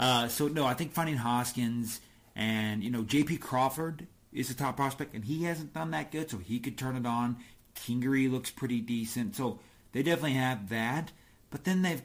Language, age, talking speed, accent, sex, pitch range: English, 30-49, 200 wpm, American, male, 110-130 Hz